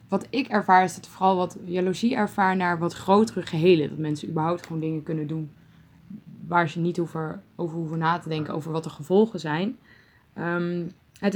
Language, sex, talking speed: Dutch, female, 190 wpm